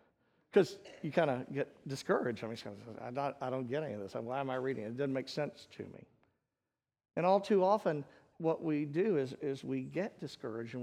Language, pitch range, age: English, 145-230 Hz, 50-69